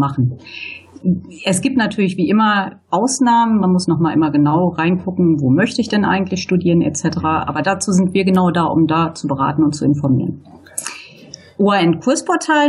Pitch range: 170-240 Hz